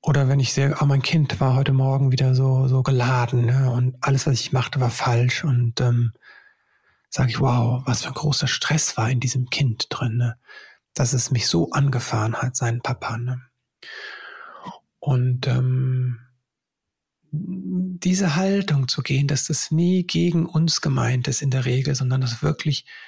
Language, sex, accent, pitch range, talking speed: German, male, German, 125-155 Hz, 170 wpm